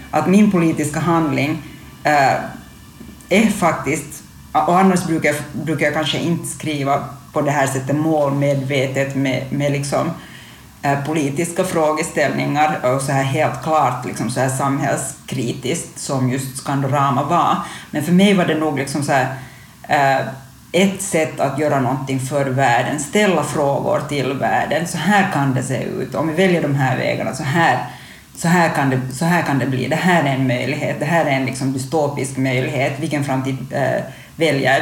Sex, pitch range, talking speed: female, 135-160 Hz, 175 wpm